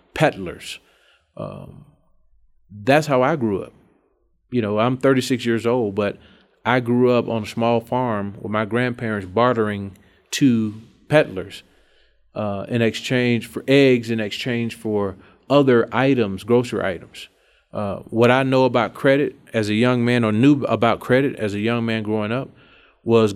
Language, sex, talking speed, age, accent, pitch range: English, male, 150 wpm, 30-49, American, 110-125 Hz